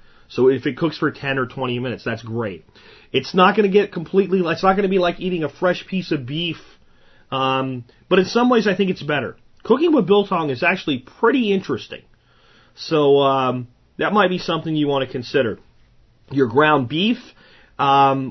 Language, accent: English, American